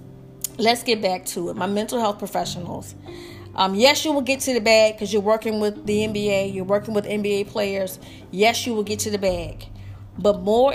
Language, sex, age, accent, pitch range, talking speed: English, female, 30-49, American, 195-245 Hz, 205 wpm